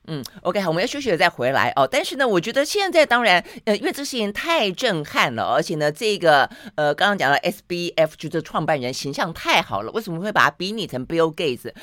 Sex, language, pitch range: female, Chinese, 155-230 Hz